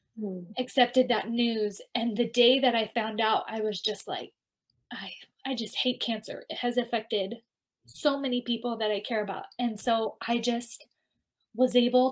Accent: American